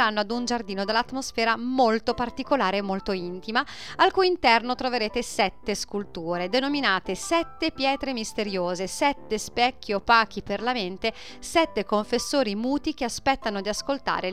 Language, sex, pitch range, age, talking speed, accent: Italian, female, 195-270 Hz, 40-59, 135 wpm, native